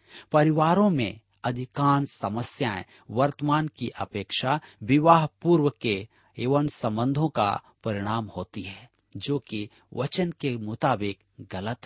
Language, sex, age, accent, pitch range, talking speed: Hindi, male, 40-59, native, 110-150 Hz, 110 wpm